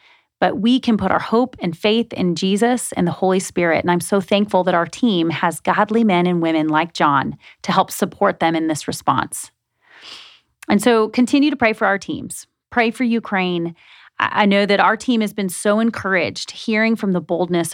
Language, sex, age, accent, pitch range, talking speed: English, female, 30-49, American, 175-220 Hz, 200 wpm